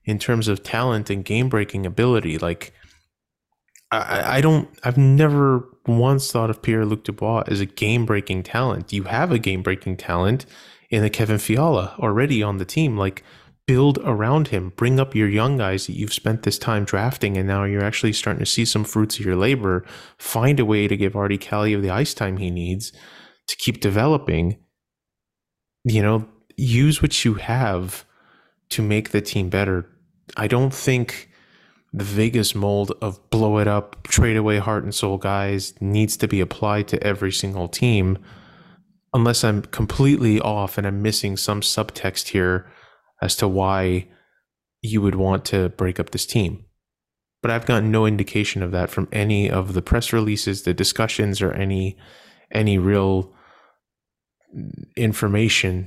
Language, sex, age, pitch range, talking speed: English, male, 20-39, 95-115 Hz, 170 wpm